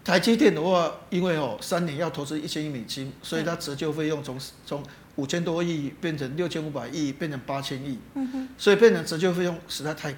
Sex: male